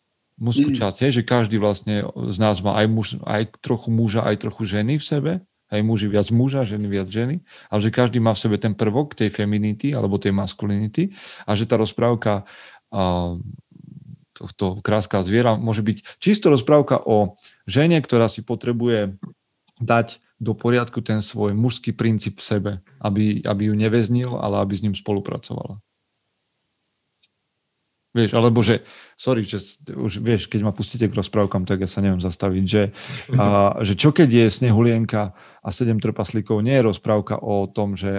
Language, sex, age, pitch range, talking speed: Slovak, male, 40-59, 100-115 Hz, 165 wpm